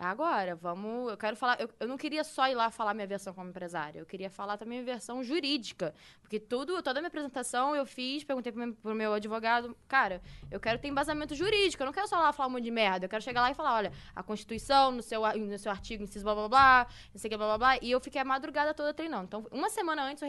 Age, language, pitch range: 10-29, Portuguese, 215-275 Hz